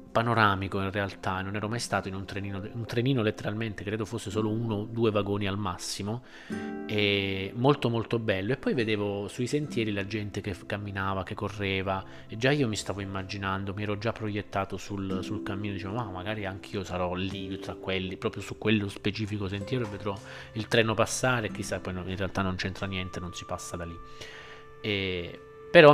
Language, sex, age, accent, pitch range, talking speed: Italian, male, 20-39, native, 95-110 Hz, 185 wpm